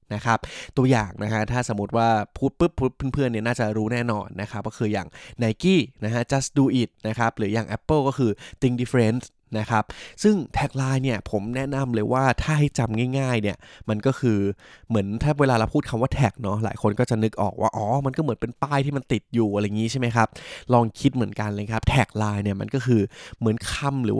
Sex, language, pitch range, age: male, Thai, 110-130 Hz, 20-39